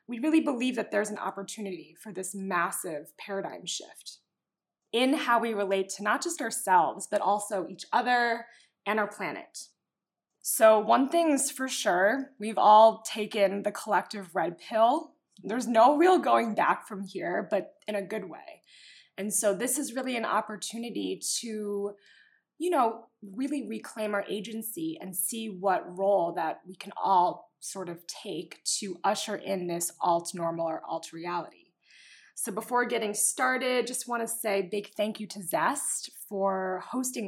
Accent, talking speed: American, 160 wpm